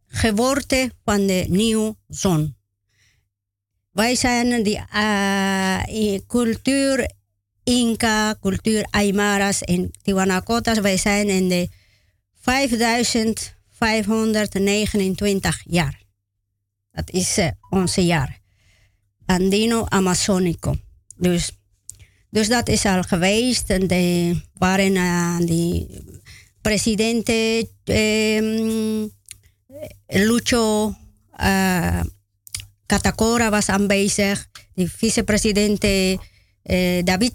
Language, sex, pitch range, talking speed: Dutch, male, 150-220 Hz, 80 wpm